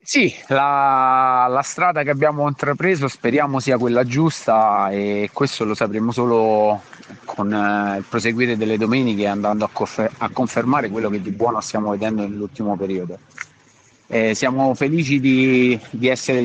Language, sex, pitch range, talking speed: Italian, male, 110-130 Hz, 145 wpm